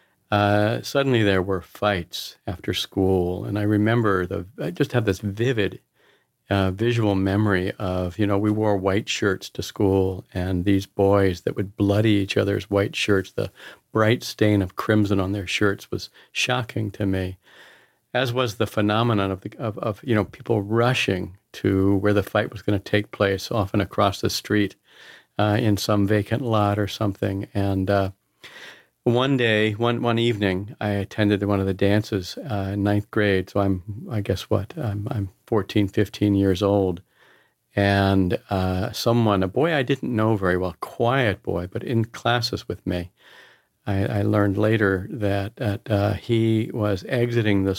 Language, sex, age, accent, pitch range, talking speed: English, male, 50-69, American, 100-110 Hz, 175 wpm